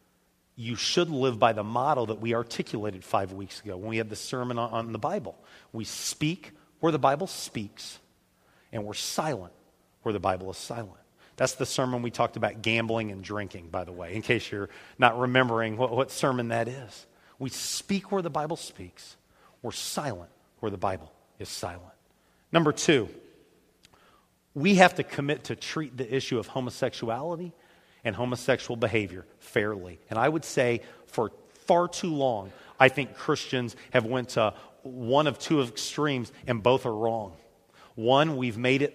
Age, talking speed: 40-59, 170 wpm